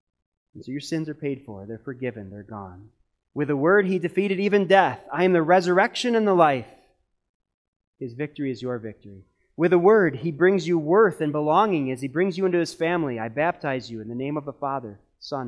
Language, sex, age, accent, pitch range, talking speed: English, male, 30-49, American, 115-180 Hz, 215 wpm